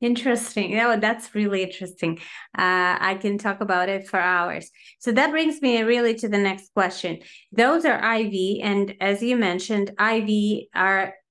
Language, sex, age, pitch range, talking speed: English, female, 30-49, 190-230 Hz, 170 wpm